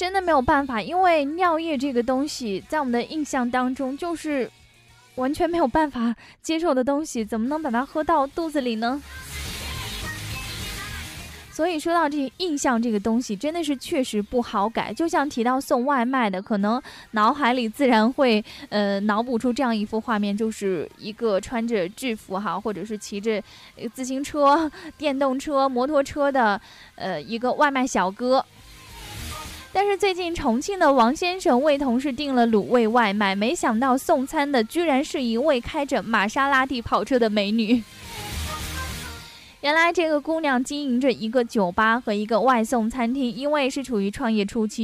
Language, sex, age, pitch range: Chinese, female, 10-29, 215-285 Hz